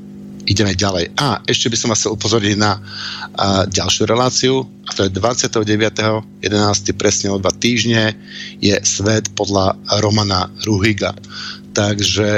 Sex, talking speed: male, 125 wpm